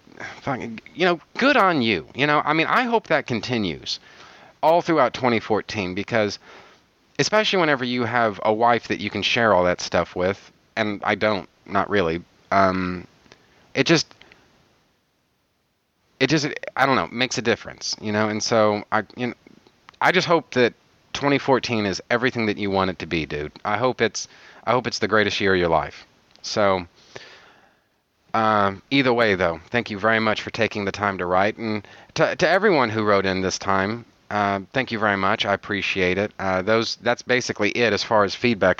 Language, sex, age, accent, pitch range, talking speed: English, male, 30-49, American, 95-120 Hz, 190 wpm